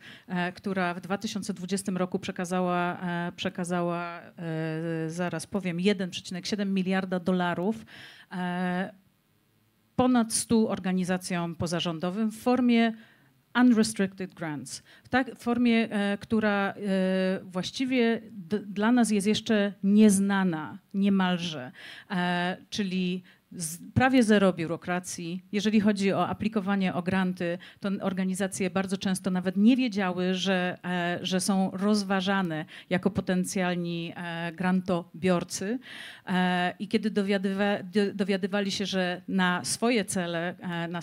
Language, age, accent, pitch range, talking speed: Polish, 40-59, native, 180-200 Hz, 105 wpm